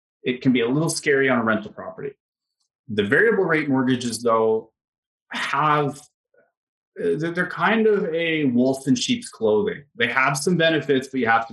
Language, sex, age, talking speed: English, male, 30-49, 165 wpm